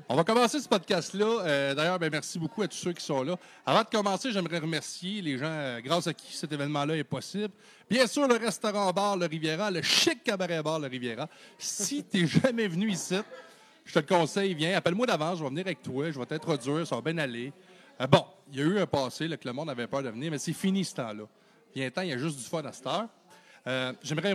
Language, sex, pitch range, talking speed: French, male, 145-200 Hz, 255 wpm